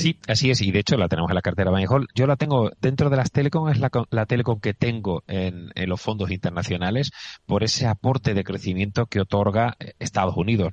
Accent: Spanish